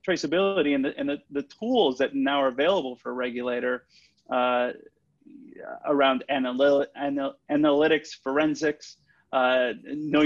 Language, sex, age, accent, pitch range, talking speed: English, male, 30-49, American, 130-165 Hz, 130 wpm